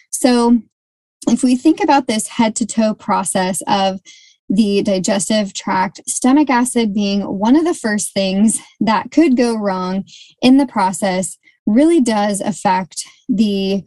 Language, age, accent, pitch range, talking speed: English, 20-39, American, 200-260 Hz, 135 wpm